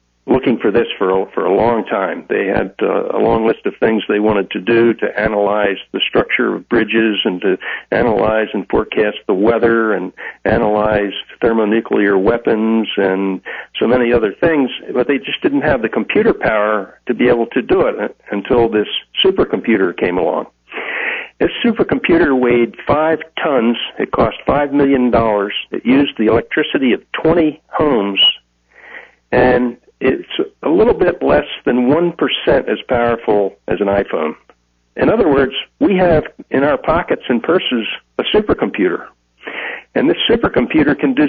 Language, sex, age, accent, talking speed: English, male, 60-79, American, 155 wpm